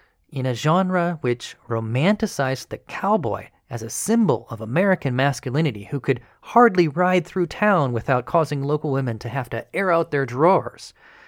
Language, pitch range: English, 115-145 Hz